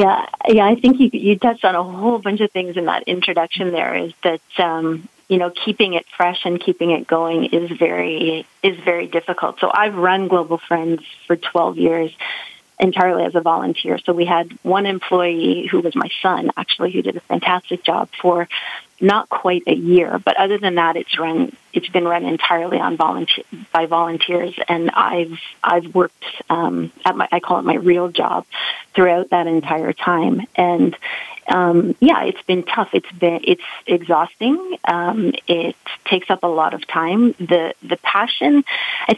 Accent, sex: American, female